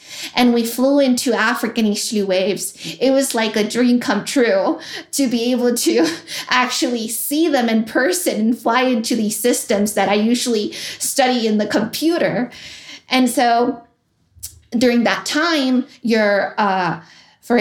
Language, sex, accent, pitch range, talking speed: English, female, American, 210-250 Hz, 145 wpm